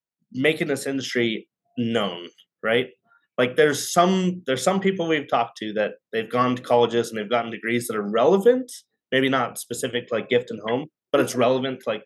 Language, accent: English, American